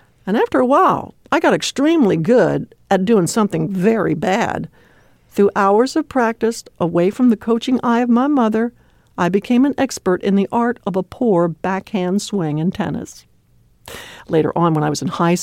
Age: 60-79